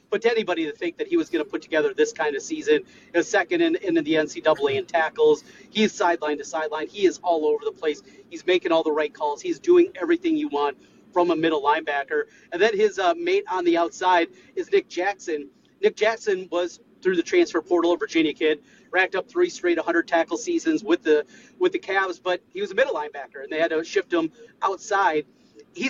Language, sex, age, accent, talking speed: English, male, 30-49, American, 220 wpm